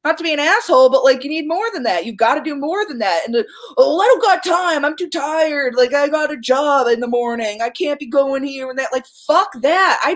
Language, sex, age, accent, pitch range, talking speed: English, female, 20-39, American, 230-315 Hz, 280 wpm